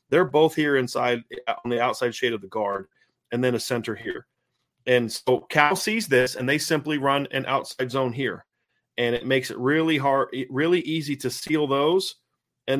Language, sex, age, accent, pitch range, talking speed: English, male, 30-49, American, 115-140 Hz, 190 wpm